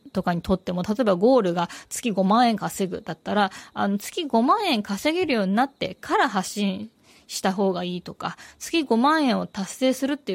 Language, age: Japanese, 20-39